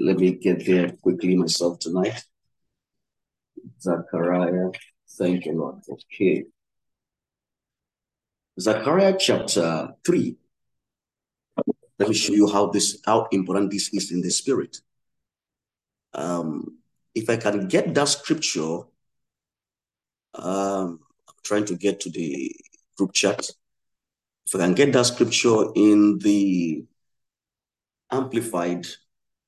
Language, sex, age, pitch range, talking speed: English, male, 50-69, 90-115 Hz, 110 wpm